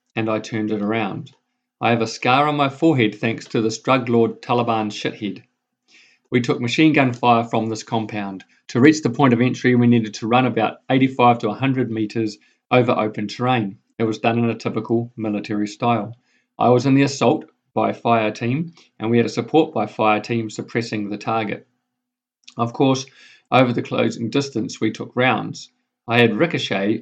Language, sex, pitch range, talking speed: English, male, 110-135 Hz, 185 wpm